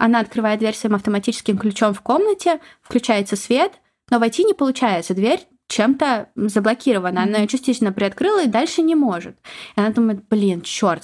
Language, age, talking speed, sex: Russian, 20-39, 160 wpm, female